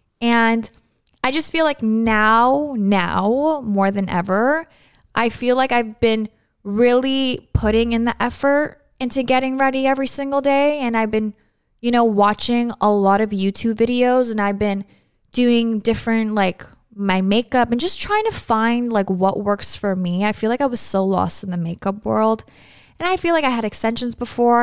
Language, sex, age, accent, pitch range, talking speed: English, female, 20-39, American, 195-245 Hz, 180 wpm